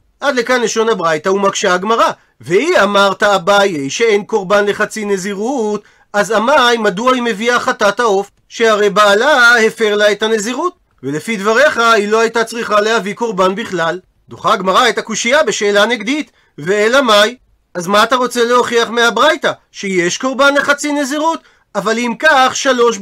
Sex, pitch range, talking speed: male, 200-245 Hz, 150 wpm